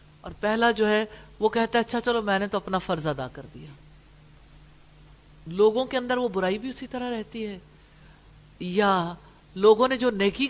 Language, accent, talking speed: English, Indian, 175 wpm